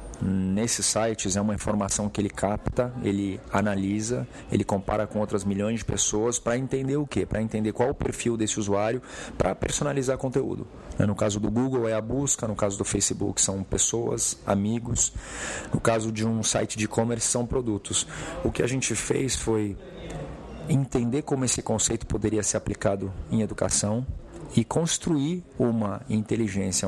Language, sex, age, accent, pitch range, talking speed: Portuguese, male, 40-59, Brazilian, 105-120 Hz, 165 wpm